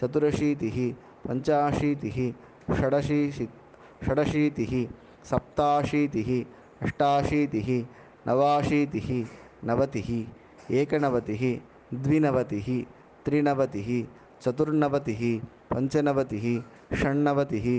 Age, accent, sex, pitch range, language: 20-39, native, male, 110-135 Hz, Tamil